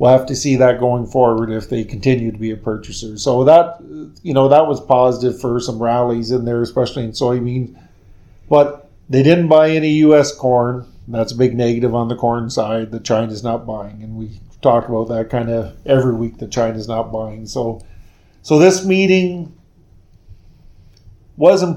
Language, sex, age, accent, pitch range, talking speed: English, male, 50-69, American, 115-140 Hz, 180 wpm